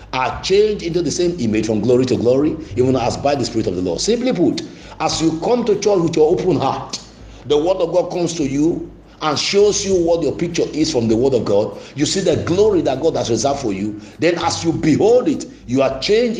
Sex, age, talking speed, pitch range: male, 50-69, 240 wpm, 115-175 Hz